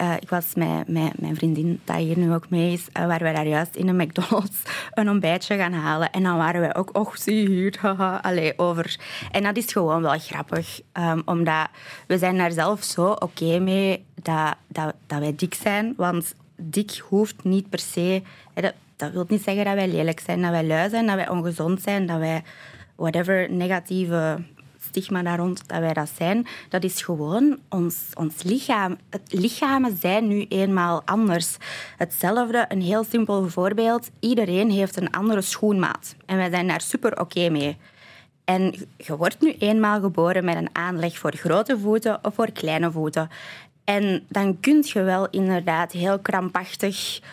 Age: 20-39